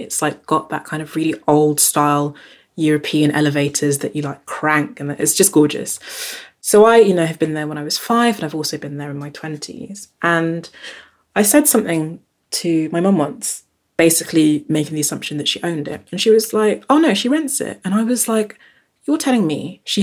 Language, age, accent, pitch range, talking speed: English, 20-39, British, 155-220 Hz, 215 wpm